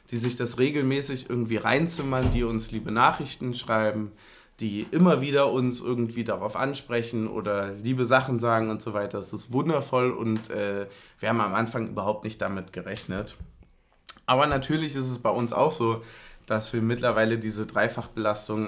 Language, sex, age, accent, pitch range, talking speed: German, male, 20-39, German, 110-125 Hz, 165 wpm